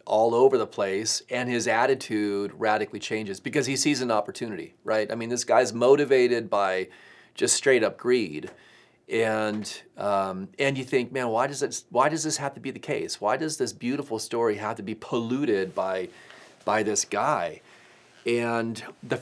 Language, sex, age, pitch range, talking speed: English, male, 40-59, 105-125 Hz, 180 wpm